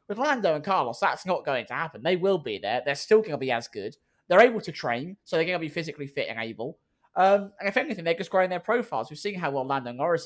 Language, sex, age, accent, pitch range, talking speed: English, male, 20-39, British, 140-205 Hz, 280 wpm